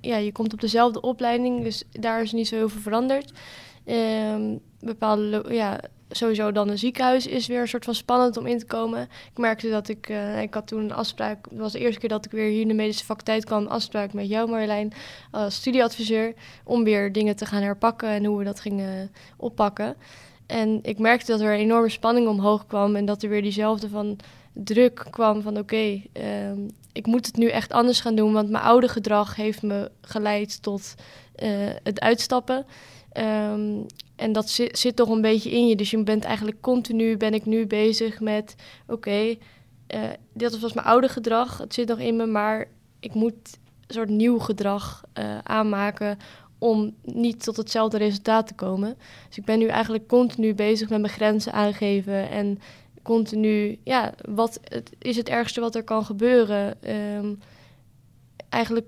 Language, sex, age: Dutch, female, 10-29